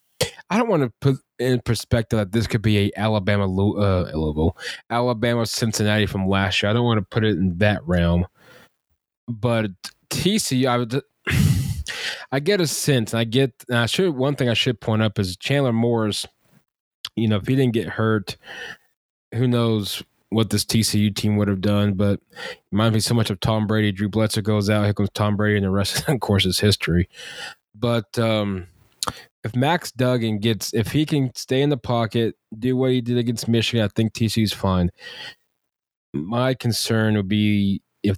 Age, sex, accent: 20-39, male, American